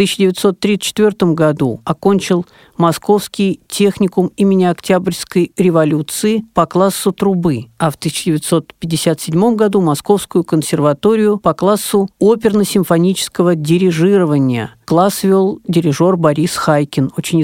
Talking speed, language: 95 wpm, Russian